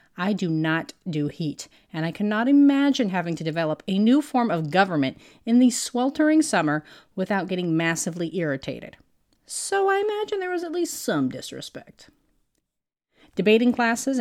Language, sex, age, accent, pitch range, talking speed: English, female, 40-59, American, 160-245 Hz, 150 wpm